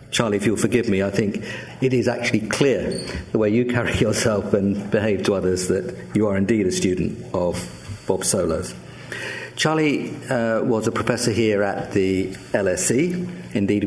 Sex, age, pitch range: male, 50-69, 95-115 Hz